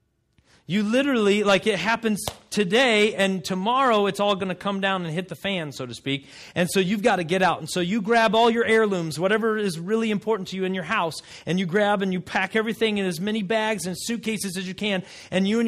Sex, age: male, 30-49